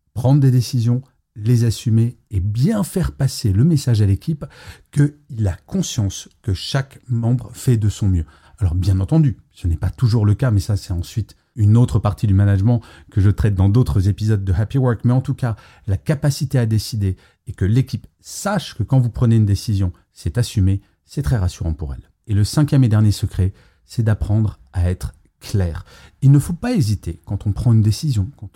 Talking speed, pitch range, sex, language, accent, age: 205 wpm, 100-130 Hz, male, French, French, 40-59